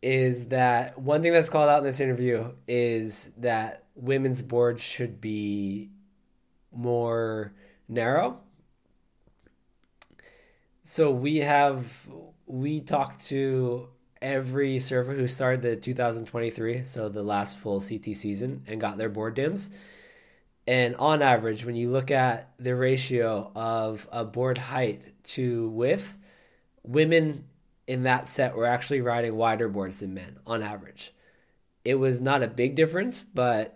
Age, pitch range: 20-39, 110-130 Hz